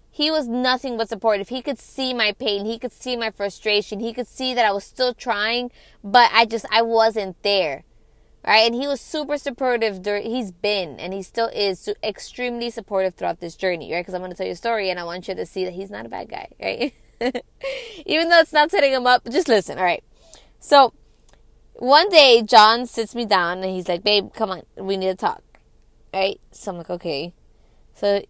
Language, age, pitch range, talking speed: English, 20-39, 180-235 Hz, 215 wpm